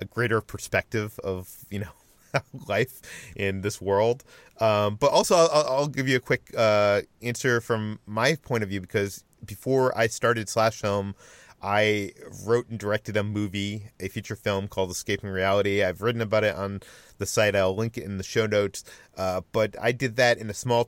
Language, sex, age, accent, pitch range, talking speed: English, male, 30-49, American, 100-125 Hz, 190 wpm